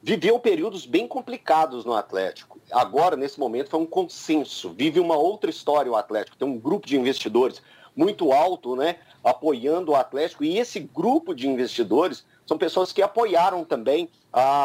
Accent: Brazilian